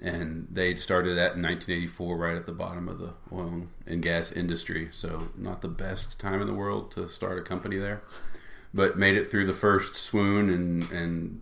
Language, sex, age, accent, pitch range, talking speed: English, male, 40-59, American, 85-95 Hz, 200 wpm